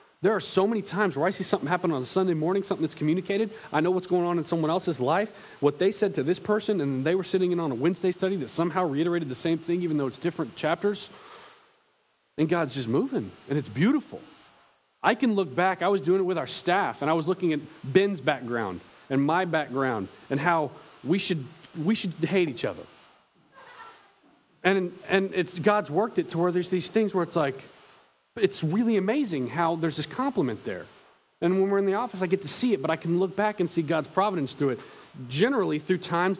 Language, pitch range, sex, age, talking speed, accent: English, 140-185 Hz, male, 40-59, 225 wpm, American